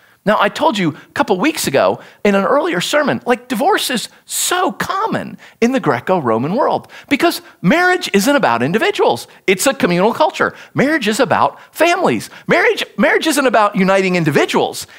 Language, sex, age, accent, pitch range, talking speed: English, male, 40-59, American, 190-305 Hz, 160 wpm